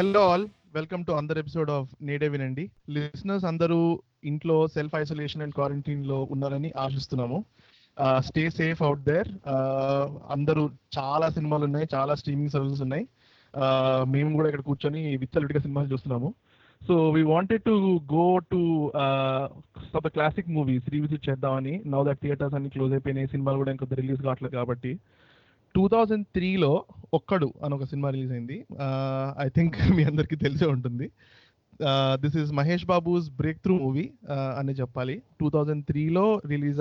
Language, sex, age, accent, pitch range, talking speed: Telugu, male, 30-49, native, 135-155 Hz, 155 wpm